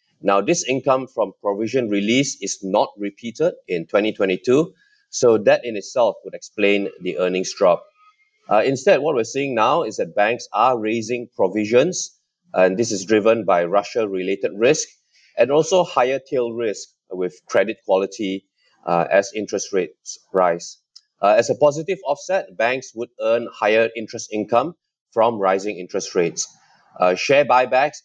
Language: English